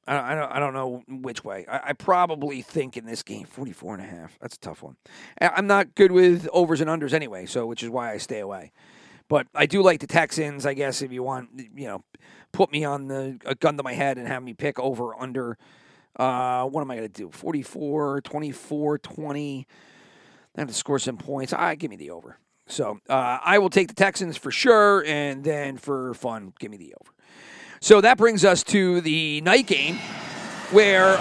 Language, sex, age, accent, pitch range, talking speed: English, male, 40-59, American, 135-190 Hz, 210 wpm